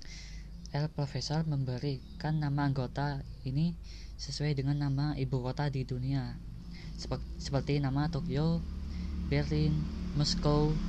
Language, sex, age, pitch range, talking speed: Indonesian, female, 20-39, 130-160 Hz, 100 wpm